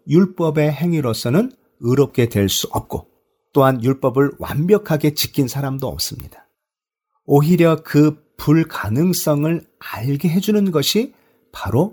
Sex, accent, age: male, native, 40-59